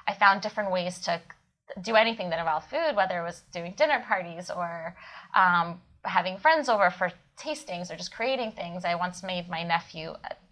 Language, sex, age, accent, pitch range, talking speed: English, female, 20-39, American, 175-205 Hz, 190 wpm